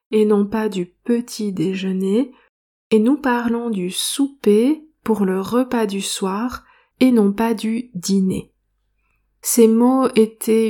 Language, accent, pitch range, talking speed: French, French, 200-235 Hz, 135 wpm